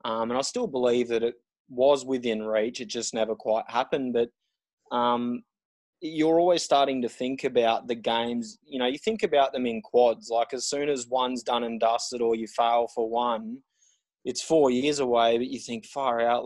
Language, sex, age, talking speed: English, male, 20-39, 200 wpm